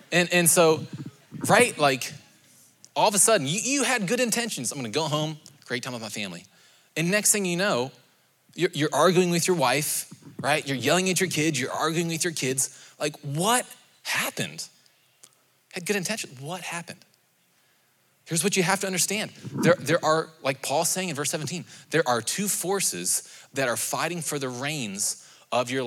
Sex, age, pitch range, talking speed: male, 20-39, 135-180 Hz, 185 wpm